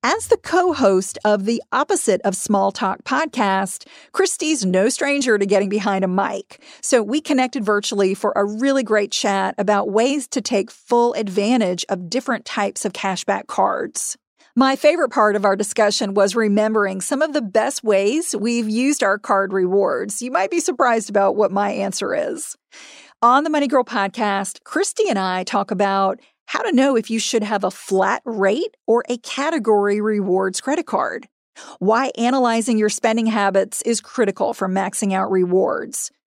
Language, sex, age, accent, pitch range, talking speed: English, female, 40-59, American, 195-250 Hz, 170 wpm